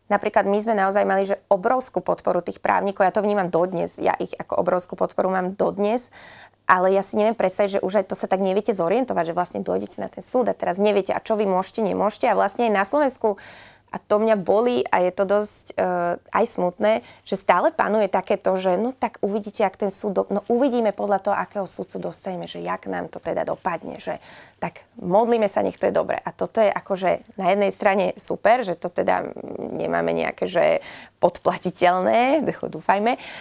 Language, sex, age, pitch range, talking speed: Slovak, female, 20-39, 185-210 Hz, 205 wpm